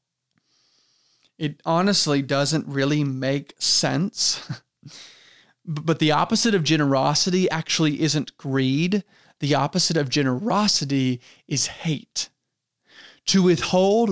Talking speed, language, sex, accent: 95 wpm, English, male, American